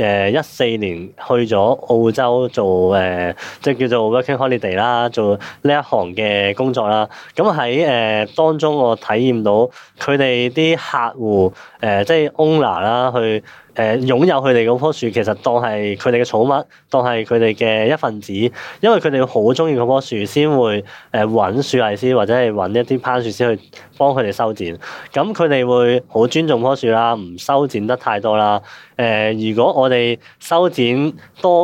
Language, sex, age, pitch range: Chinese, male, 20-39, 110-130 Hz